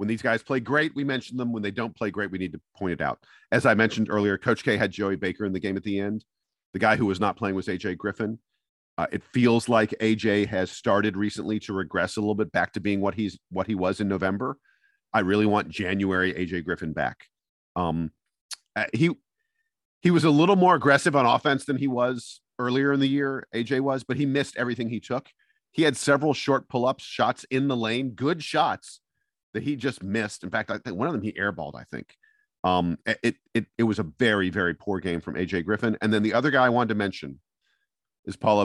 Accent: American